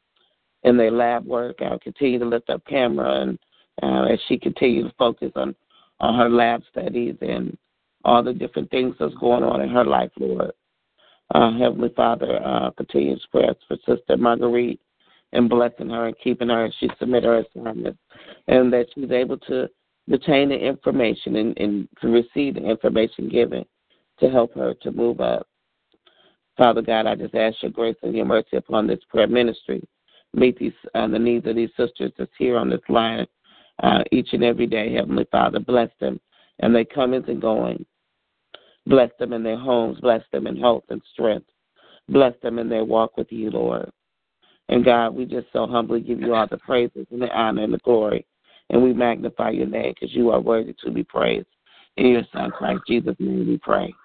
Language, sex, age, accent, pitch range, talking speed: English, male, 40-59, American, 110-120 Hz, 195 wpm